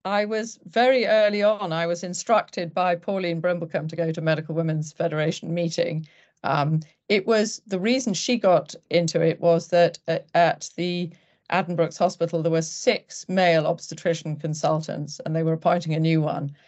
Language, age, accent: English, 40-59, British